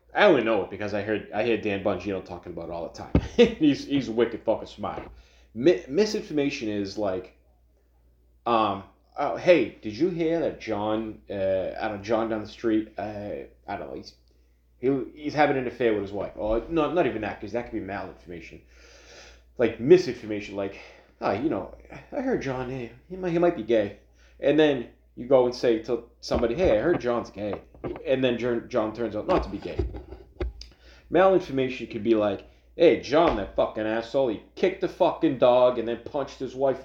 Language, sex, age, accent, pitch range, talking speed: English, male, 20-39, American, 100-135 Hz, 200 wpm